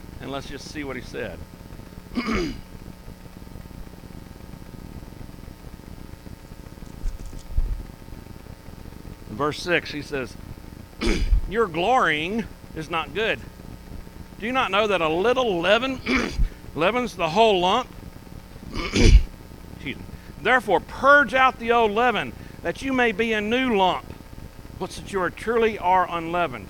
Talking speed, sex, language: 110 wpm, male, English